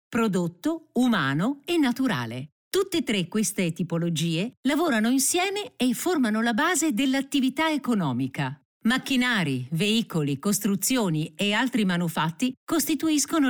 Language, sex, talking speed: Italian, female, 105 wpm